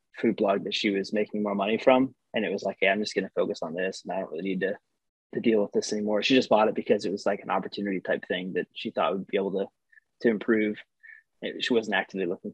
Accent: American